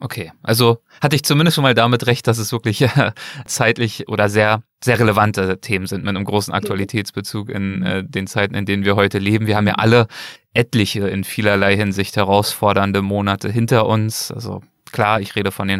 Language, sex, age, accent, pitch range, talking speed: German, male, 20-39, German, 100-115 Hz, 185 wpm